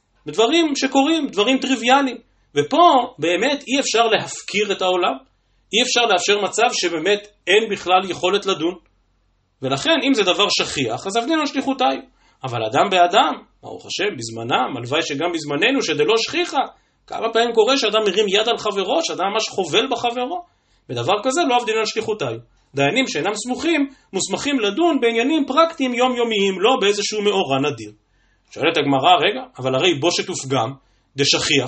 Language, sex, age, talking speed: Hebrew, male, 30-49, 140 wpm